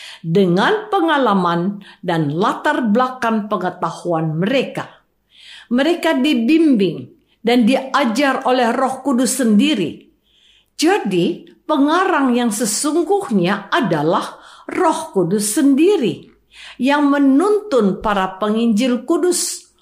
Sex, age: female, 50-69